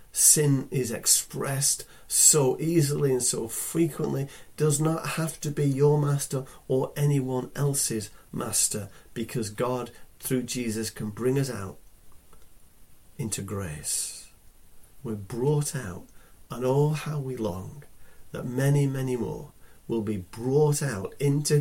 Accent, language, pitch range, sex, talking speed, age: British, English, 110-140 Hz, male, 130 wpm, 40-59